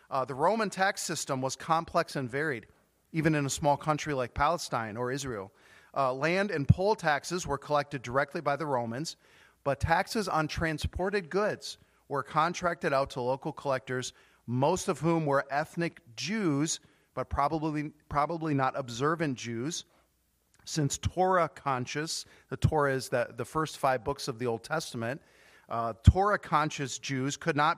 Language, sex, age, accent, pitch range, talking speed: English, male, 40-59, American, 130-160 Hz, 155 wpm